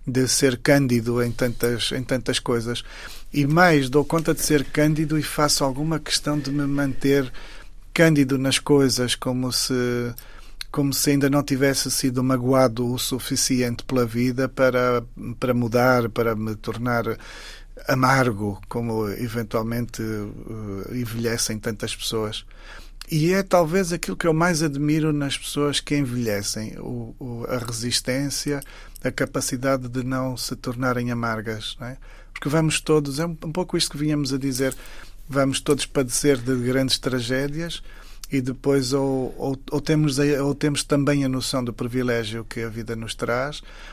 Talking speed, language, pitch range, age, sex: 150 wpm, Portuguese, 115-140 Hz, 40-59, male